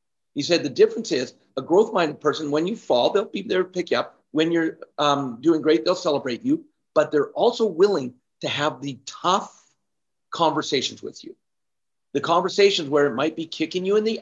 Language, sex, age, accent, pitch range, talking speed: English, male, 40-59, American, 145-195 Hz, 200 wpm